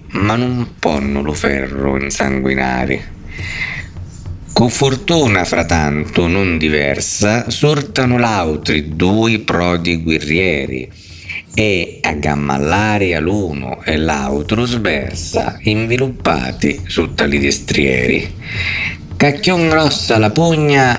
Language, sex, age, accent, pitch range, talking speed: Italian, male, 50-69, native, 80-115 Hz, 90 wpm